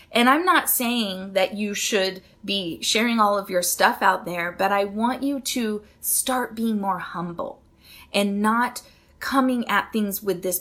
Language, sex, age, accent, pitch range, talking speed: English, female, 30-49, American, 190-230 Hz, 175 wpm